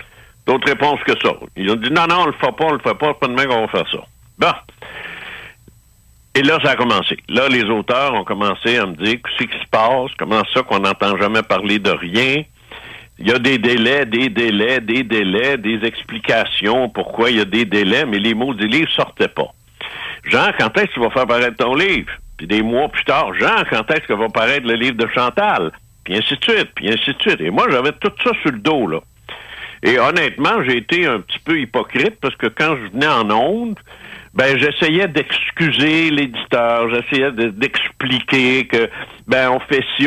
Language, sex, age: French, male, 60-79